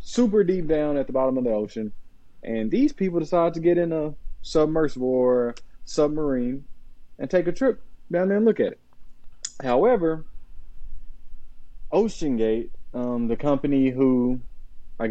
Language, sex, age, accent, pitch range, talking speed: English, male, 20-39, American, 100-140 Hz, 145 wpm